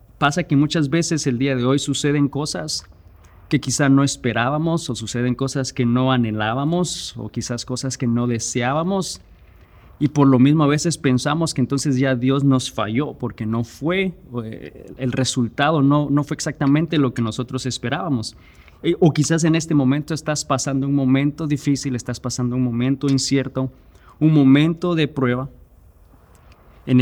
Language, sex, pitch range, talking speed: Spanish, male, 120-145 Hz, 160 wpm